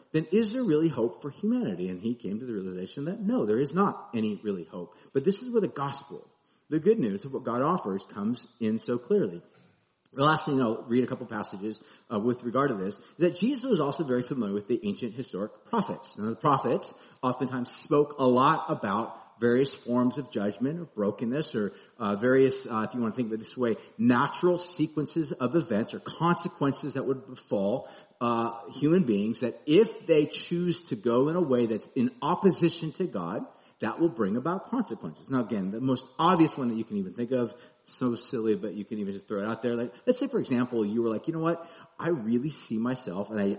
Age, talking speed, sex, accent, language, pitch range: 50-69, 225 wpm, male, American, English, 115-175 Hz